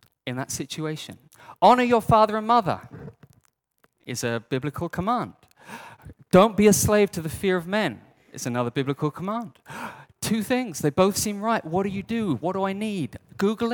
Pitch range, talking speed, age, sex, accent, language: 140-205 Hz, 175 wpm, 30-49, male, British, English